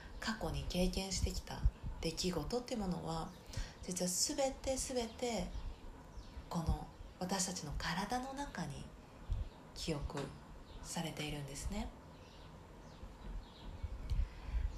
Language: Japanese